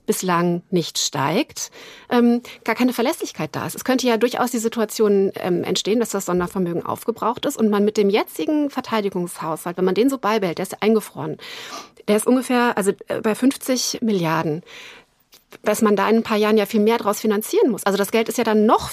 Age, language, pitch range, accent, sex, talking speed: 30-49, German, 205-250 Hz, German, female, 195 wpm